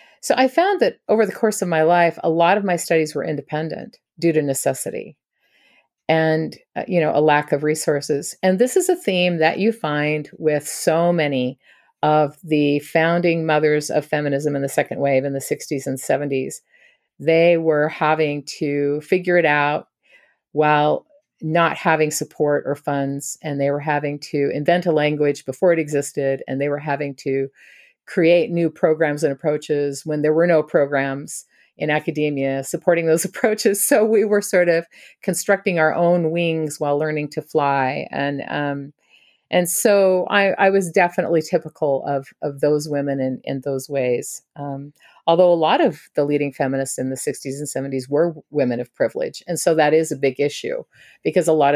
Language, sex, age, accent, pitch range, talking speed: English, female, 50-69, American, 145-170 Hz, 180 wpm